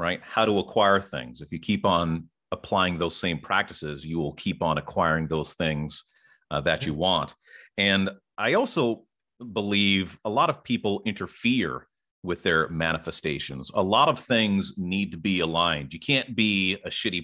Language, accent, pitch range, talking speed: English, American, 80-100 Hz, 170 wpm